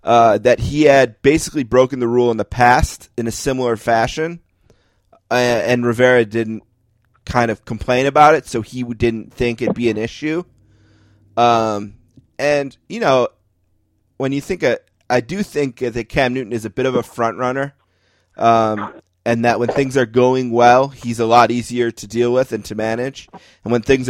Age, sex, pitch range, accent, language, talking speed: 30-49, male, 105-125 Hz, American, English, 185 wpm